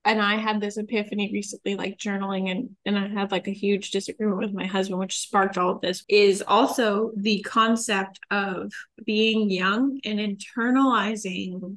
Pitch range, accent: 200-225 Hz, American